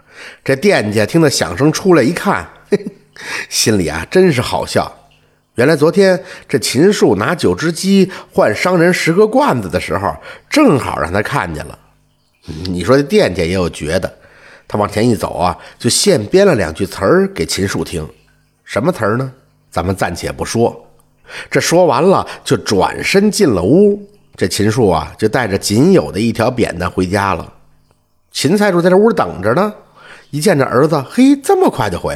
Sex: male